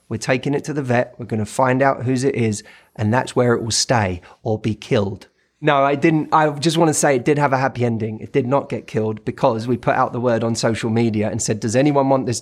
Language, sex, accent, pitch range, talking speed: English, male, British, 125-180 Hz, 265 wpm